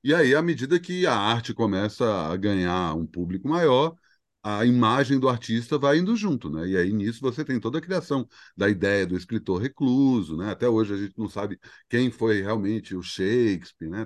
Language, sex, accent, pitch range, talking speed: Portuguese, male, Brazilian, 95-145 Hz, 200 wpm